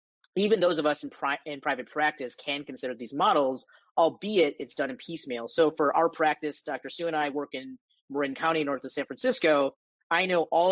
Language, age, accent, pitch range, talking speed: English, 30-49, American, 130-165 Hz, 200 wpm